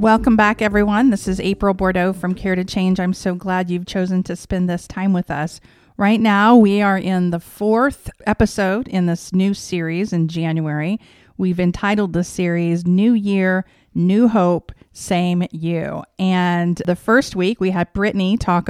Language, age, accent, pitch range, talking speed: English, 40-59, American, 175-200 Hz, 175 wpm